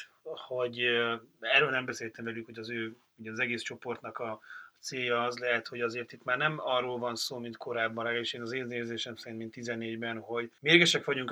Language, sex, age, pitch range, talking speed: Hungarian, male, 30-49, 115-140 Hz, 200 wpm